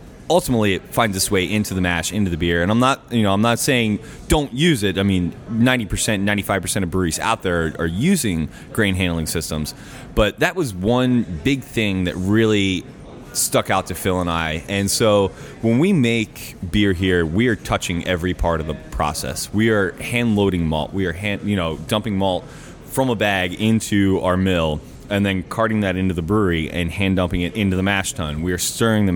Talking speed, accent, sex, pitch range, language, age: 205 wpm, American, male, 90-110 Hz, English, 20-39